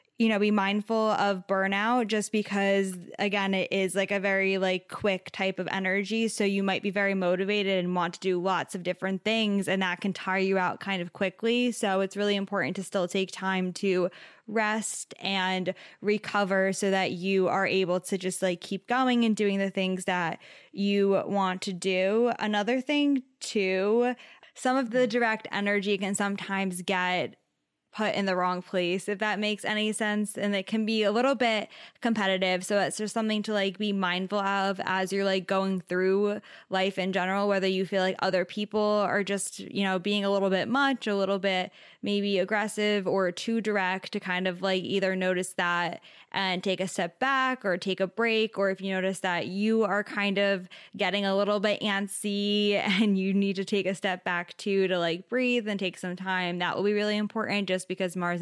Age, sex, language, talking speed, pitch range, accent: 10-29, female, English, 200 wpm, 185-210 Hz, American